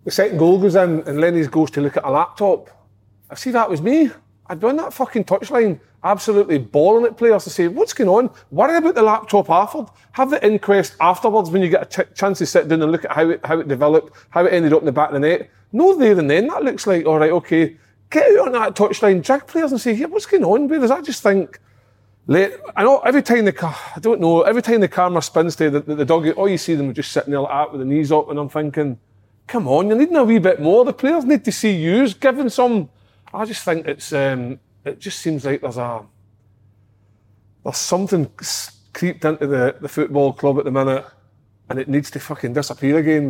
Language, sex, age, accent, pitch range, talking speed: English, male, 30-49, British, 135-195 Hz, 250 wpm